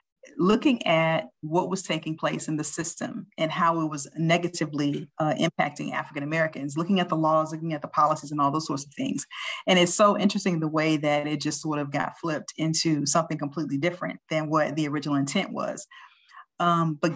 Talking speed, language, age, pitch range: 195 wpm, English, 40-59, 155-180 Hz